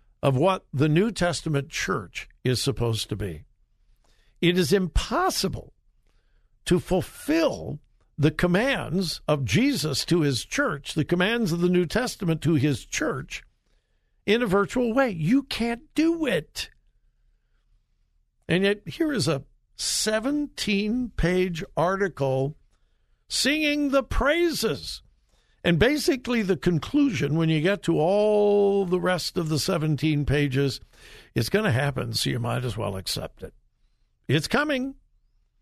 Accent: American